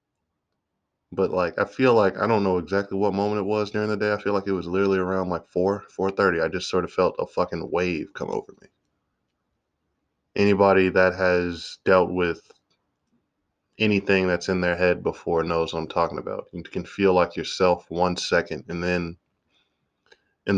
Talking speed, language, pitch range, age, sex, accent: 185 wpm, English, 90-105 Hz, 20-39, male, American